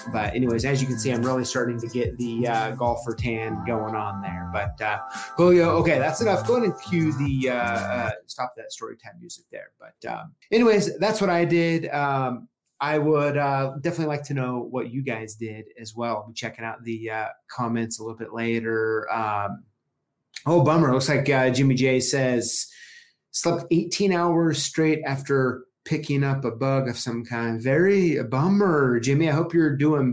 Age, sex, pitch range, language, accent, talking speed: 30-49, male, 120-160 Hz, English, American, 195 wpm